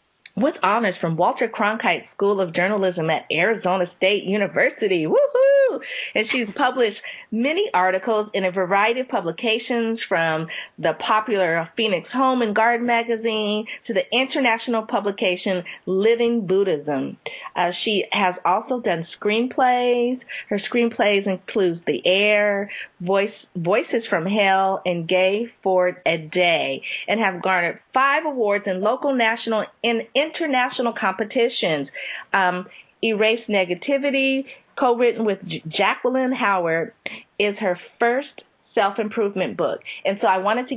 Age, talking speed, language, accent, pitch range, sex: 40-59, 125 wpm, English, American, 180-235 Hz, female